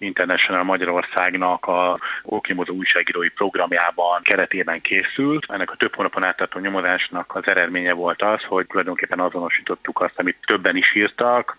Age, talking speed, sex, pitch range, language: 30-49, 135 wpm, male, 90-115 Hz, Hungarian